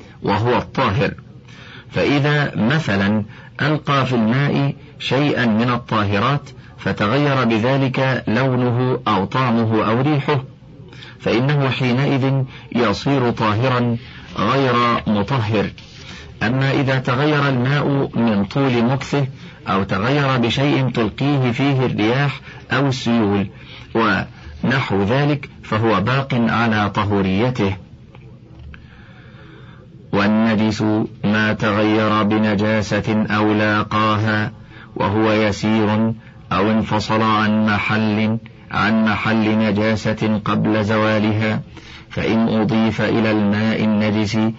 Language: Arabic